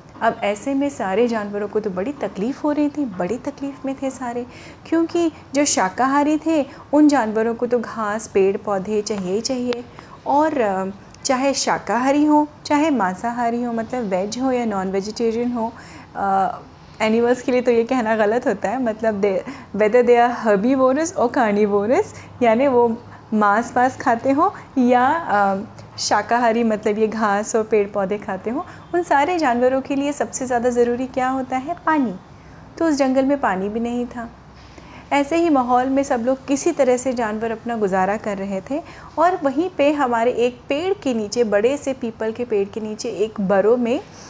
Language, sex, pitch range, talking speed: Hindi, female, 215-270 Hz, 175 wpm